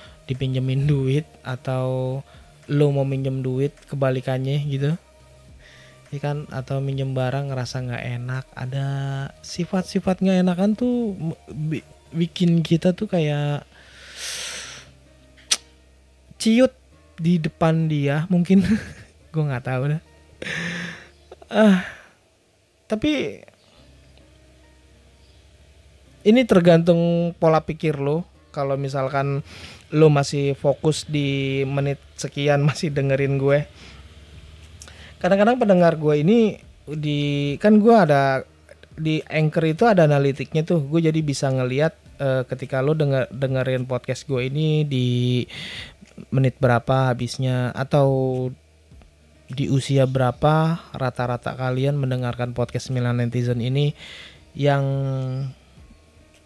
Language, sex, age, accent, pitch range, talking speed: Indonesian, male, 20-39, native, 125-155 Hz, 100 wpm